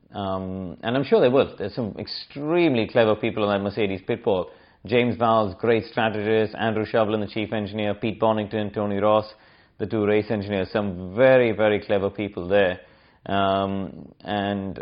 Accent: Indian